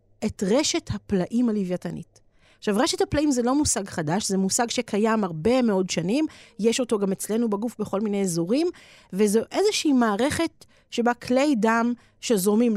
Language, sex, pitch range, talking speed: Hebrew, female, 185-240 Hz, 150 wpm